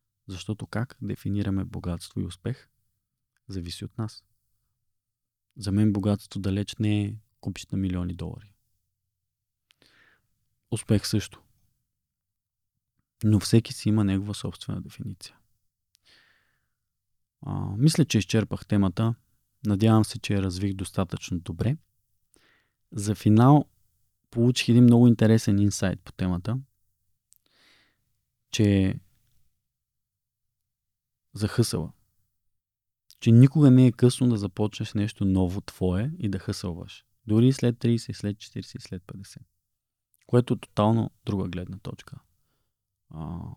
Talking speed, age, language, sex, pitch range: 105 wpm, 20-39, Bulgarian, male, 100-115 Hz